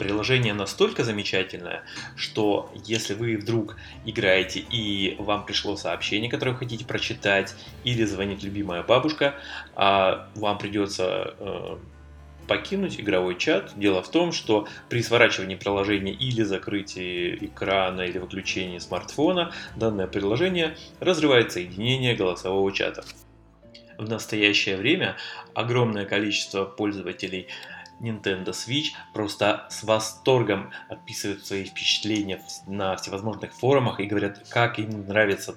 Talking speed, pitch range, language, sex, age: 110 wpm, 95-115 Hz, Russian, male, 30-49